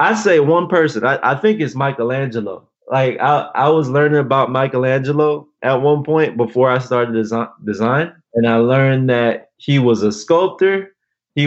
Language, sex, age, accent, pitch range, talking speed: English, male, 20-39, American, 115-145 Hz, 175 wpm